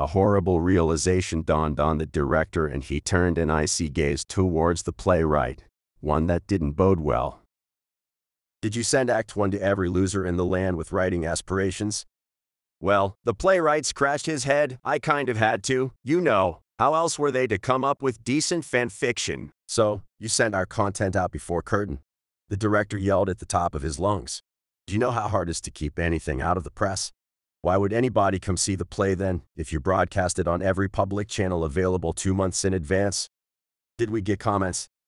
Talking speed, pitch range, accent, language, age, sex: 195 wpm, 80-105 Hz, American, English, 40-59, male